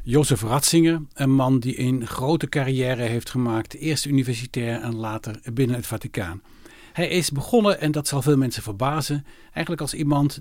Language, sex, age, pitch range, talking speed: Dutch, male, 60-79, 125-155 Hz, 165 wpm